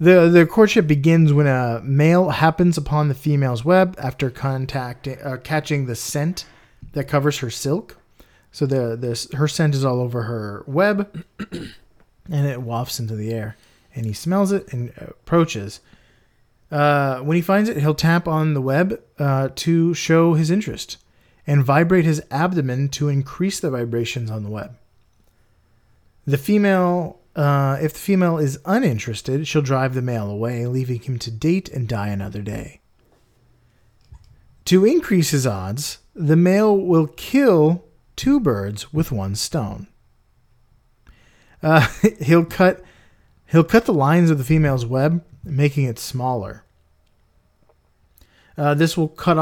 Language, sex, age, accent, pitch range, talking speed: English, male, 30-49, American, 120-165 Hz, 150 wpm